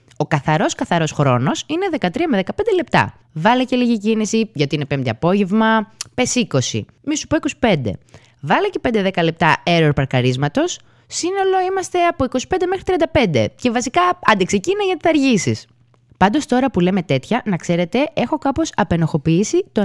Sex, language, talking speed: female, Greek, 160 wpm